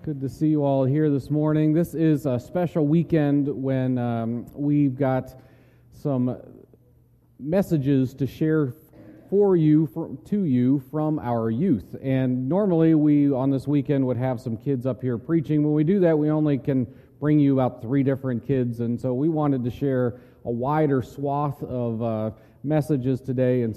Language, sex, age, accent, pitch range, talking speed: English, male, 40-59, American, 125-150 Hz, 170 wpm